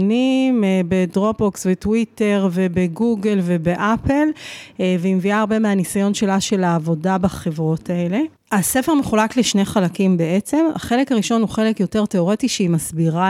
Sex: female